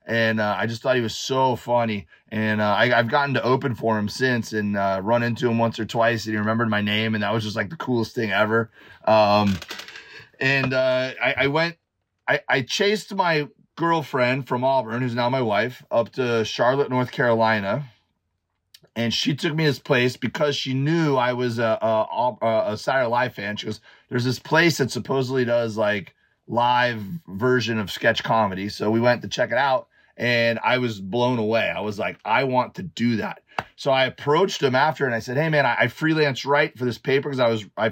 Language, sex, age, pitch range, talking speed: English, male, 30-49, 110-130 Hz, 215 wpm